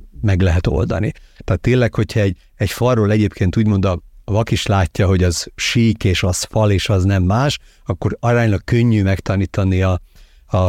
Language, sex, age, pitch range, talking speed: Hungarian, male, 50-69, 95-115 Hz, 180 wpm